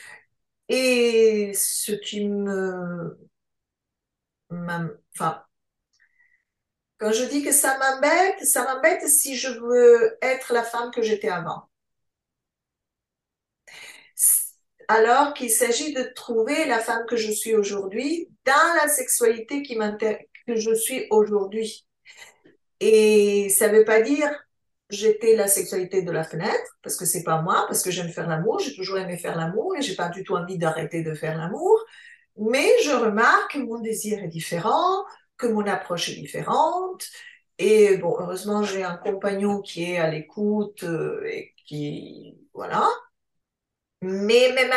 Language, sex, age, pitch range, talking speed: French, female, 50-69, 205-325 Hz, 140 wpm